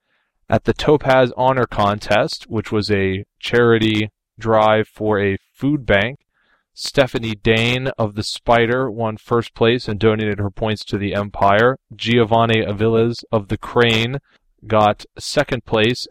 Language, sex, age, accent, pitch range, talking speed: English, male, 20-39, American, 105-120 Hz, 140 wpm